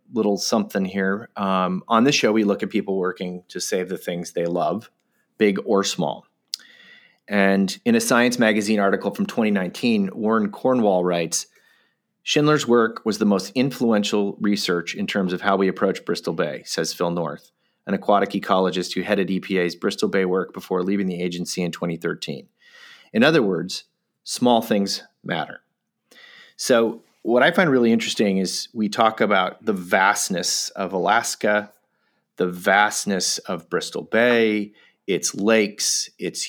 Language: English